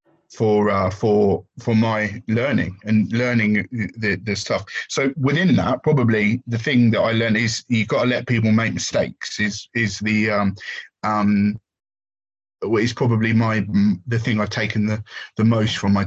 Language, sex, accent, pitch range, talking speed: English, male, British, 105-120 Hz, 175 wpm